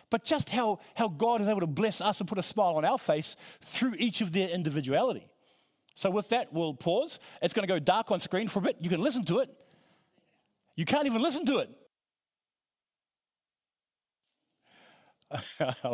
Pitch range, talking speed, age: 170-225 Hz, 180 wpm, 40-59